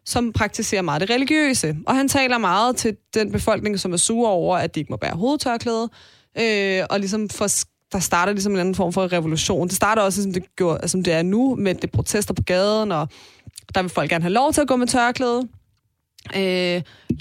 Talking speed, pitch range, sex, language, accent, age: 215 wpm, 165-210 Hz, female, Danish, native, 20-39